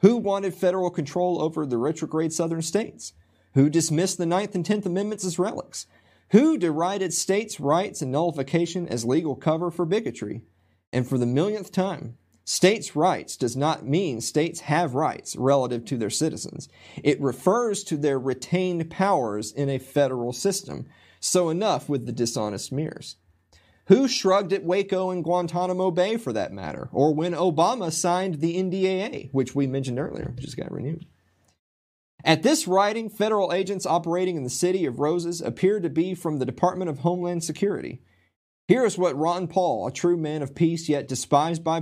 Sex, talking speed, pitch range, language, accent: male, 170 wpm, 130-180 Hz, English, American